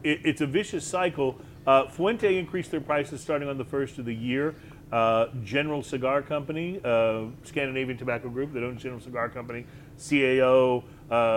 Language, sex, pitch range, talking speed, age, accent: English, male, 120-150 Hz, 165 wpm, 40-59, American